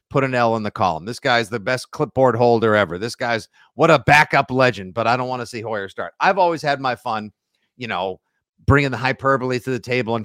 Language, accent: English, American